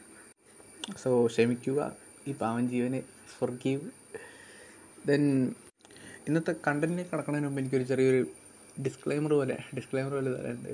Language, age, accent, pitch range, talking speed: Malayalam, 20-39, native, 125-145 Hz, 135 wpm